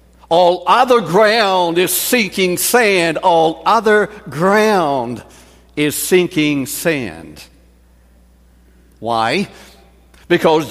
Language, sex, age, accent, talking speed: English, male, 60-79, American, 80 wpm